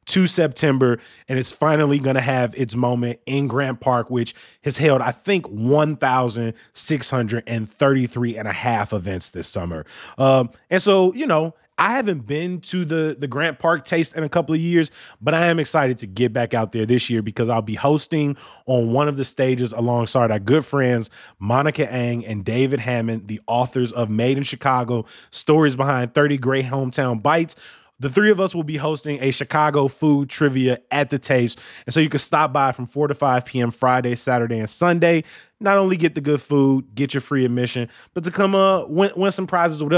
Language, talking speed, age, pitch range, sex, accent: English, 200 wpm, 20-39, 125-155 Hz, male, American